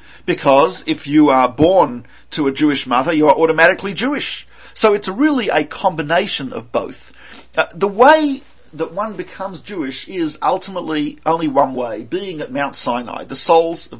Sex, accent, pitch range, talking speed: male, Australian, 140-190 Hz, 165 wpm